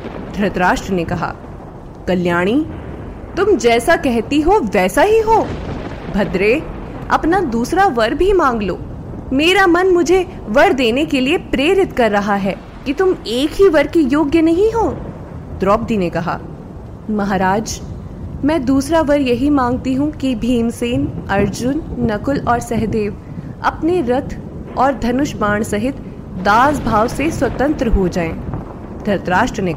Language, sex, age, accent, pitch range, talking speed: Hindi, female, 20-39, native, 210-315 Hz, 135 wpm